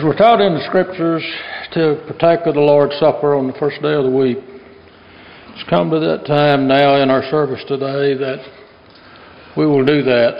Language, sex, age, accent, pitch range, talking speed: German, male, 60-79, American, 135-175 Hz, 185 wpm